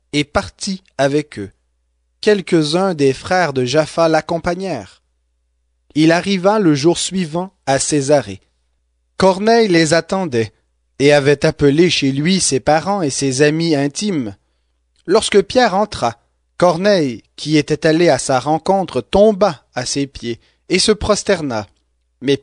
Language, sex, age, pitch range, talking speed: English, male, 30-49, 125-190 Hz, 130 wpm